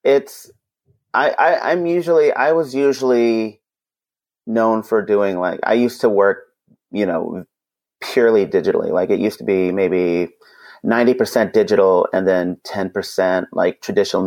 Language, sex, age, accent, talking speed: English, male, 30-49, American, 140 wpm